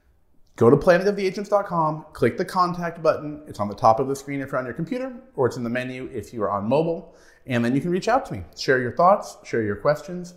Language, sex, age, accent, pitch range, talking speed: English, male, 30-49, American, 110-170 Hz, 245 wpm